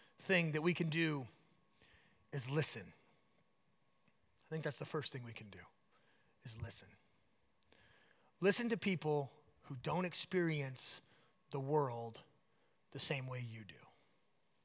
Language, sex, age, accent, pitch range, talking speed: English, male, 30-49, American, 145-185 Hz, 125 wpm